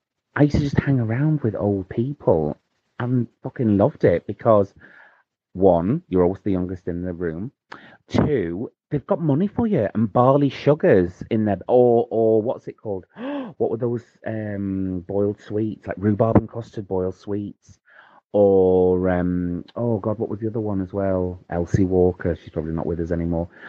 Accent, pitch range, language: British, 90-120 Hz, English